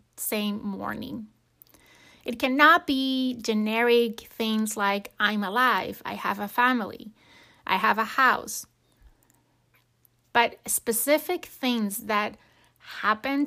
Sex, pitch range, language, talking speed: female, 215-260 Hz, English, 100 wpm